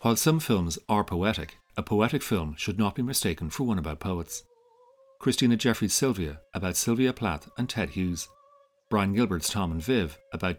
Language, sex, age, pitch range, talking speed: English, male, 40-59, 90-140 Hz, 175 wpm